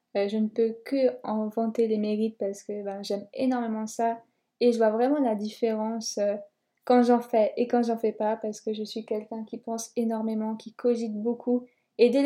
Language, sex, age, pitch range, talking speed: French, female, 20-39, 220-250 Hz, 195 wpm